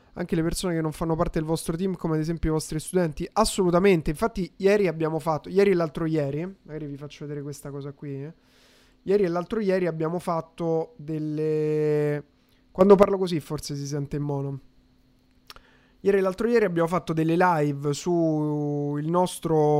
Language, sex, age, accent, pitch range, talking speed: Italian, male, 20-39, native, 150-175 Hz, 180 wpm